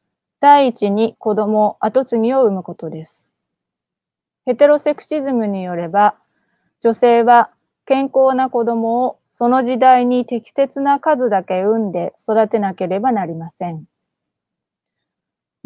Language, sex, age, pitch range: Japanese, female, 30-49, 205-255 Hz